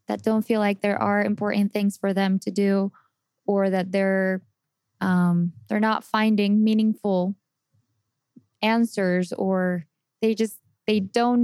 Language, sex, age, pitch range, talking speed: English, female, 10-29, 185-220 Hz, 135 wpm